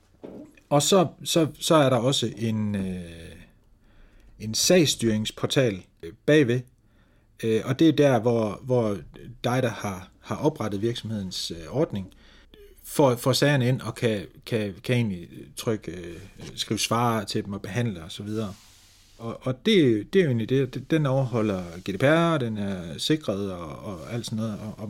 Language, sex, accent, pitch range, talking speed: Danish, male, native, 100-125 Hz, 165 wpm